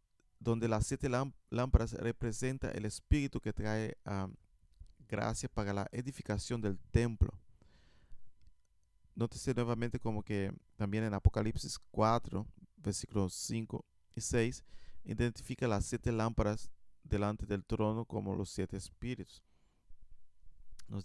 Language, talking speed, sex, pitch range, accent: Spanish, 115 wpm, male, 100-120 Hz, Venezuelan